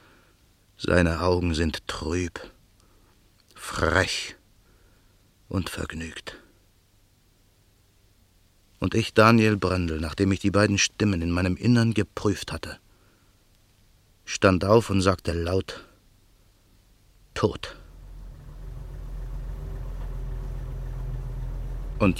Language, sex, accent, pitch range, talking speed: German, male, German, 90-115 Hz, 75 wpm